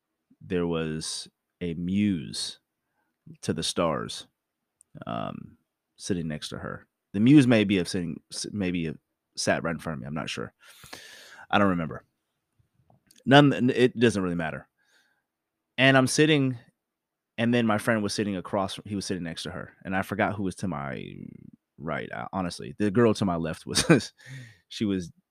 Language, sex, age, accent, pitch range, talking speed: English, male, 30-49, American, 85-105 Hz, 165 wpm